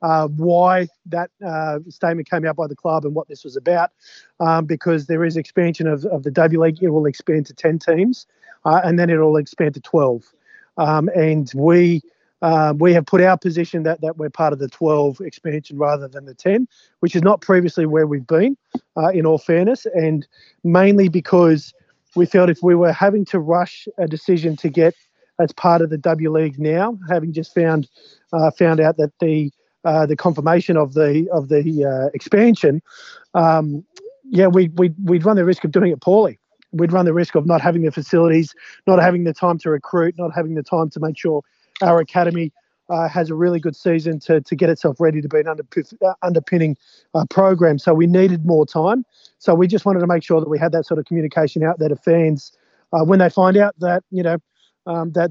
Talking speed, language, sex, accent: 215 wpm, English, male, Australian